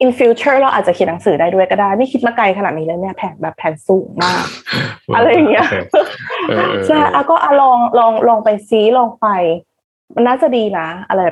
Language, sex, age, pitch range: Thai, female, 20-39, 180-255 Hz